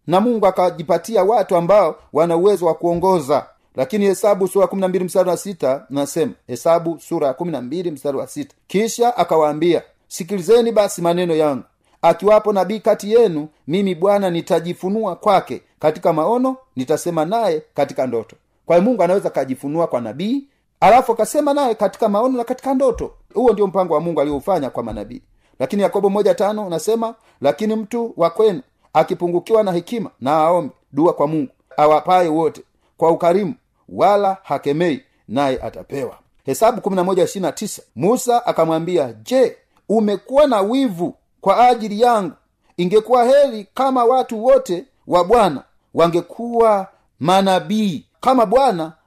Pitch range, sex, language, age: 160-220 Hz, male, Swahili, 40-59